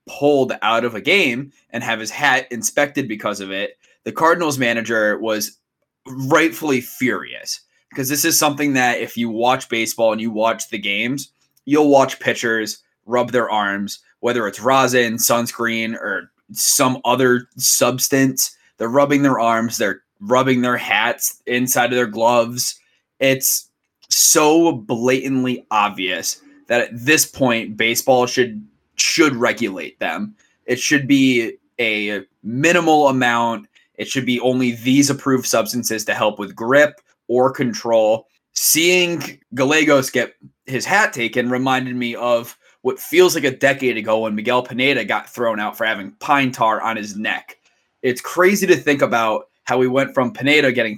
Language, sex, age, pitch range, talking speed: English, male, 20-39, 115-140 Hz, 155 wpm